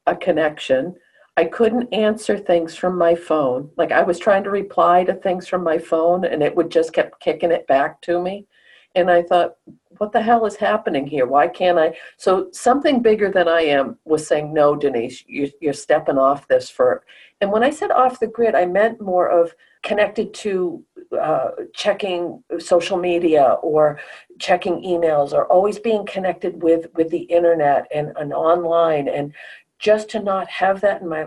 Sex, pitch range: female, 165-205 Hz